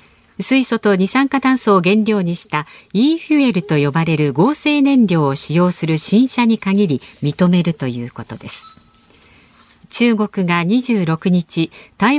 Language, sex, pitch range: Japanese, female, 160-235 Hz